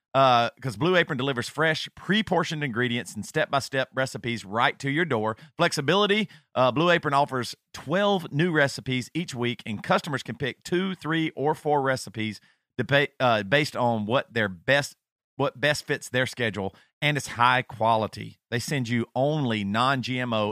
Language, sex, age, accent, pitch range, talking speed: English, male, 40-59, American, 120-160 Hz, 165 wpm